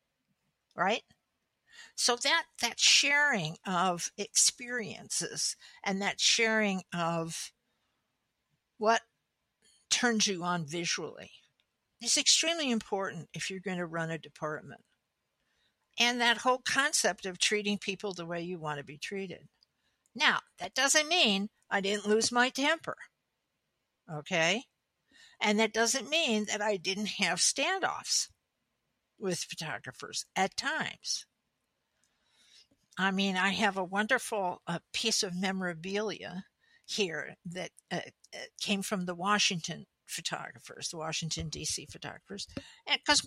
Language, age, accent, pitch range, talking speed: English, 60-79, American, 175-240 Hz, 120 wpm